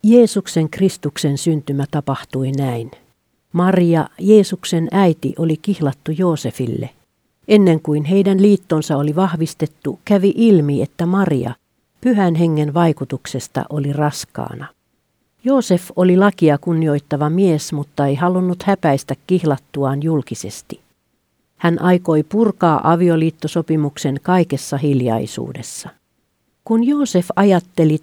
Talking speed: 100 wpm